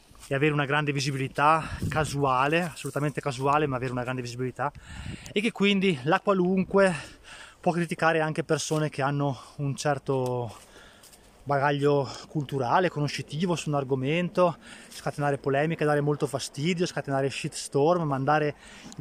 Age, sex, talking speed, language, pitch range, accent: 20-39, male, 130 wpm, Italian, 140-180 Hz, native